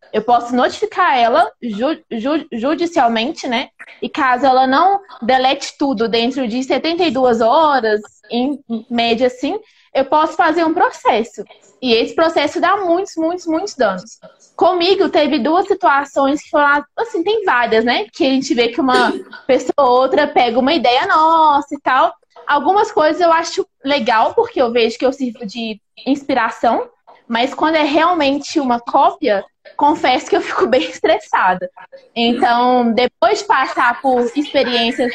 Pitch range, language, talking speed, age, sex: 235-325 Hz, Portuguese, 155 wpm, 20-39, female